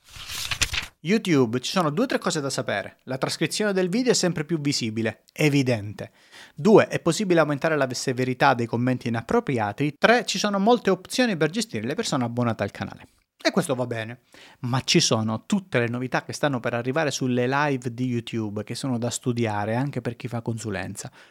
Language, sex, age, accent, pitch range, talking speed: Italian, male, 30-49, native, 125-185 Hz, 185 wpm